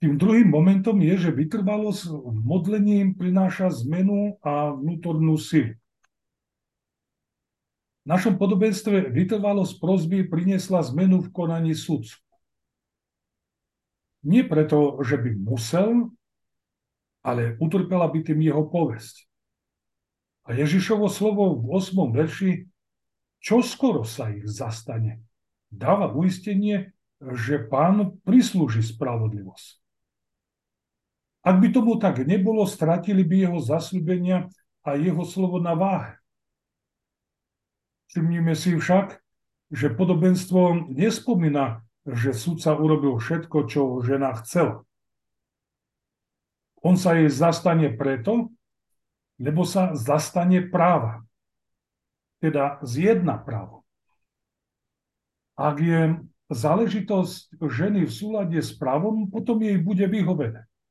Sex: male